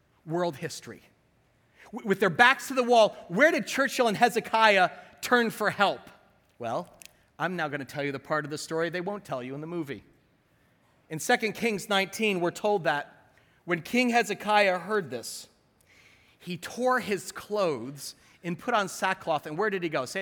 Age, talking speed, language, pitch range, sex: 40-59, 180 wpm, English, 180-250 Hz, male